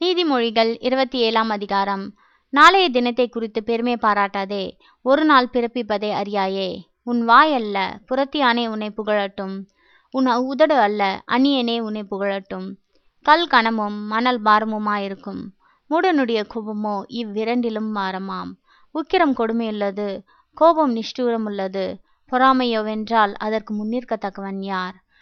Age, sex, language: 20-39, female, Tamil